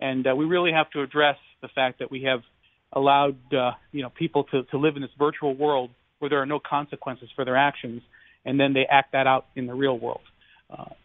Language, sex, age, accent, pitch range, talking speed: English, male, 40-59, American, 135-165 Hz, 235 wpm